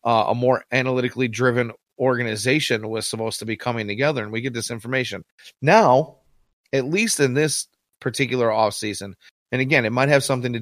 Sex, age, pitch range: male, 30-49, 105-130 Hz